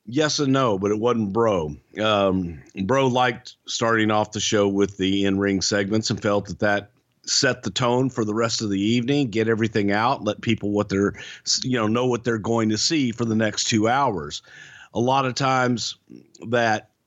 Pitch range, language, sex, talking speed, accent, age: 105-130 Hz, English, male, 195 wpm, American, 50-69